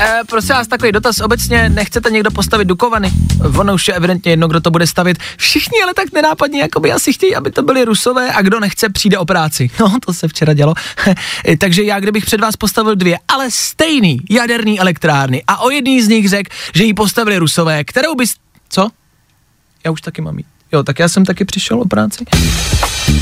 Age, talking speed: 20-39, 200 wpm